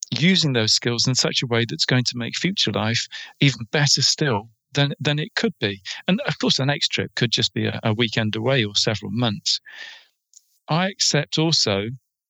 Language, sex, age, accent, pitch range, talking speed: English, male, 40-59, British, 115-150 Hz, 195 wpm